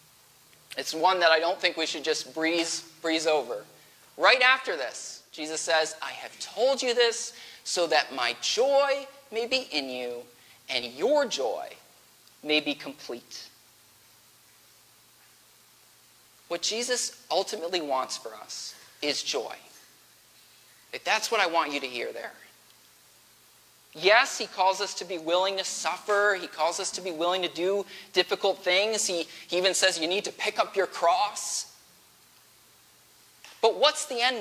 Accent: American